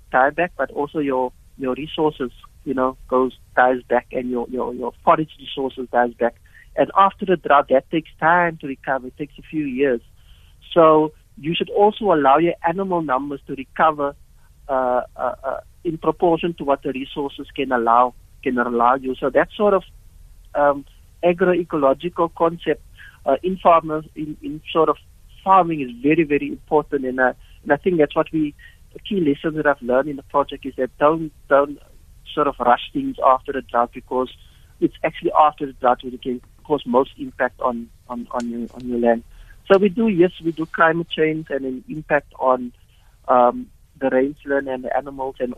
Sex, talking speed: male, 185 wpm